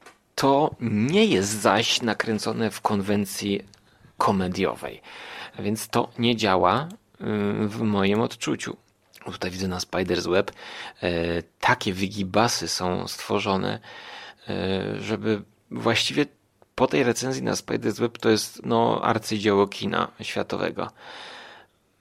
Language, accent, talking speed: Polish, native, 105 wpm